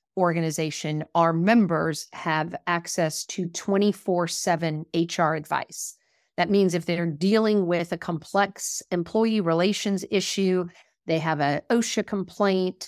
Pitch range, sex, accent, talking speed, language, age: 165-195 Hz, female, American, 115 wpm, English, 50-69